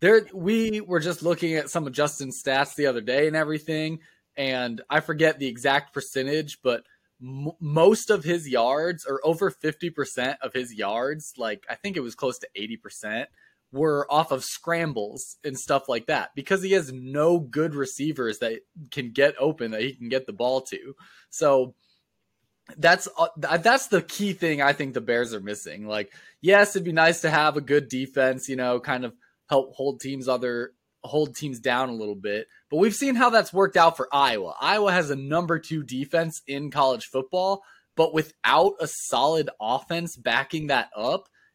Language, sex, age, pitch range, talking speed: English, male, 20-39, 135-190 Hz, 185 wpm